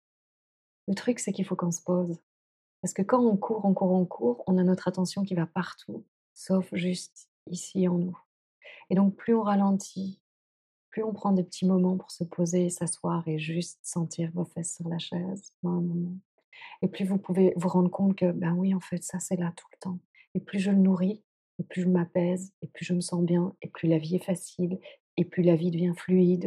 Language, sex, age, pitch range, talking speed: French, female, 30-49, 180-200 Hz, 220 wpm